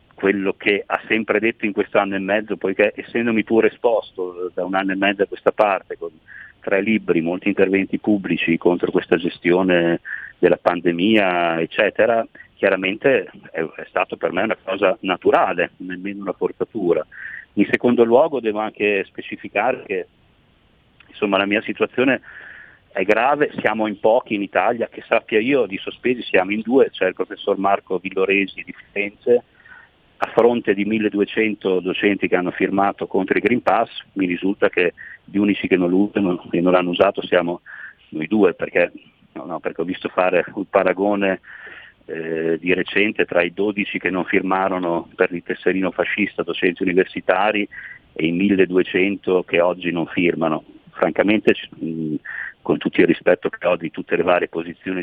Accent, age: native, 40-59